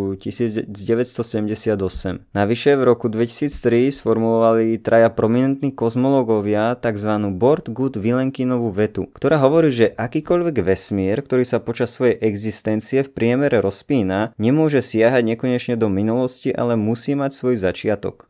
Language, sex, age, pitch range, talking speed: Slovak, male, 20-39, 105-125 Hz, 120 wpm